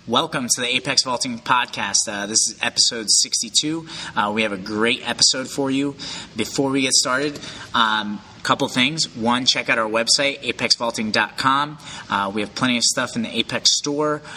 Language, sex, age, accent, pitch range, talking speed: English, male, 30-49, American, 115-140 Hz, 175 wpm